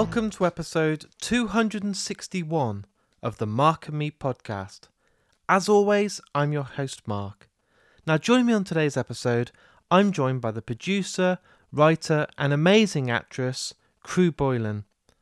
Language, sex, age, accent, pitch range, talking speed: English, male, 30-49, British, 130-170 Hz, 130 wpm